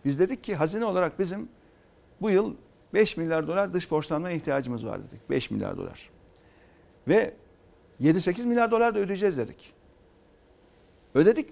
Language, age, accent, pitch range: Turkish, 50-69, native, 155-225 Hz